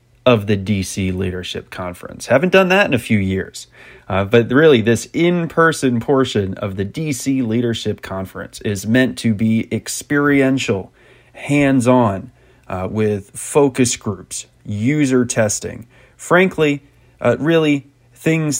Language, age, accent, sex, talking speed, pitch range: English, 30-49, American, male, 125 wpm, 105-130 Hz